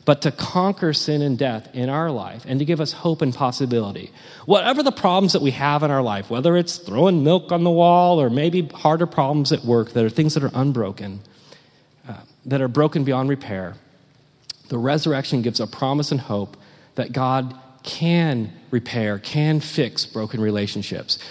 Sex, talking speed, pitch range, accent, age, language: male, 185 wpm, 120-165 Hz, American, 40-59, English